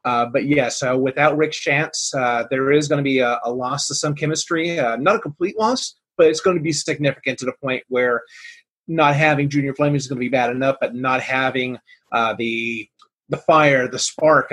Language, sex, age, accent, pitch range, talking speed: English, male, 30-49, American, 130-150 Hz, 220 wpm